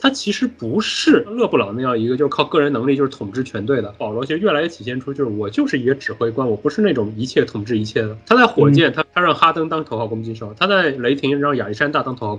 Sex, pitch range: male, 115-160 Hz